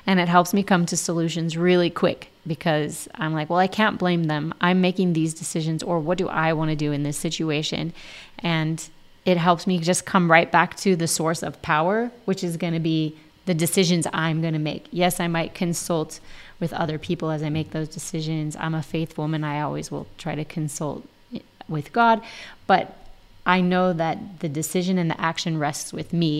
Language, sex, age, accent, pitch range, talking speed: English, female, 20-39, American, 155-180 Hz, 205 wpm